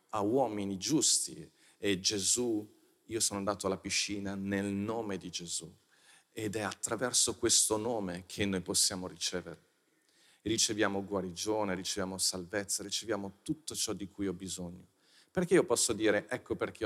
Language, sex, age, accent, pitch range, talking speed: Italian, male, 40-59, native, 95-110 Hz, 140 wpm